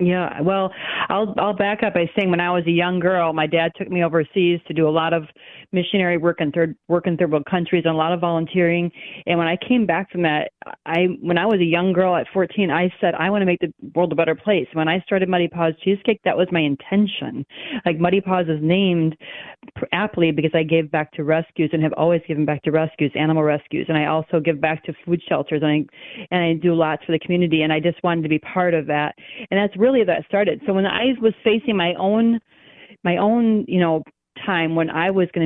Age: 40-59